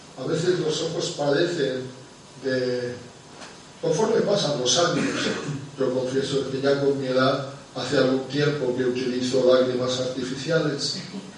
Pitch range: 130-170 Hz